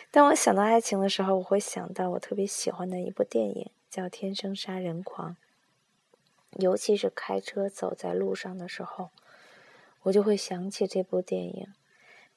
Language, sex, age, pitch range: Chinese, female, 20-39, 180-215 Hz